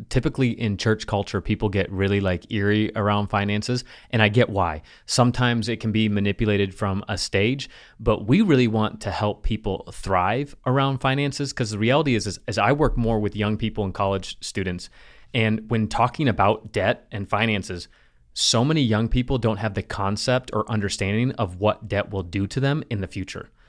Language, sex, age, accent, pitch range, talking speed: English, male, 30-49, American, 100-120 Hz, 190 wpm